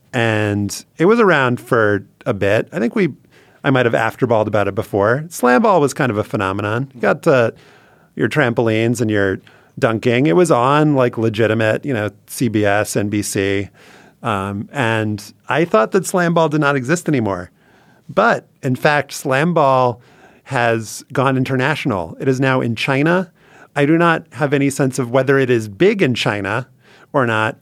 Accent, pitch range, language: American, 115-150 Hz, English